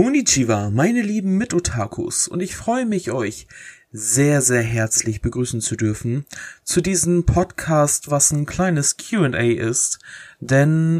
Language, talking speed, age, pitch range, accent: German, 130 wpm, 20-39, 115-145 Hz, German